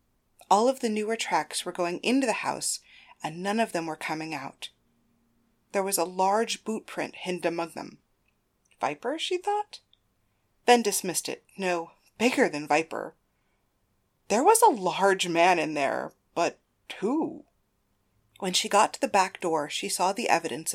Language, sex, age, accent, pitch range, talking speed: English, female, 30-49, American, 165-220 Hz, 160 wpm